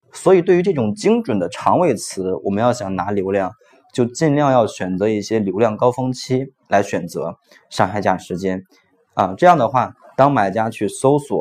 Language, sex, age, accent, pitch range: Chinese, male, 20-39, native, 100-125 Hz